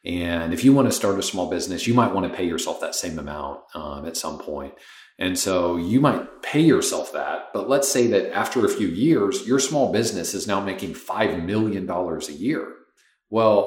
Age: 40-59